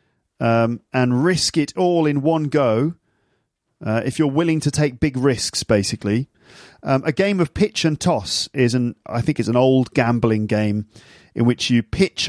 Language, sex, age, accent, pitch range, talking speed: English, male, 40-59, British, 110-140 Hz, 180 wpm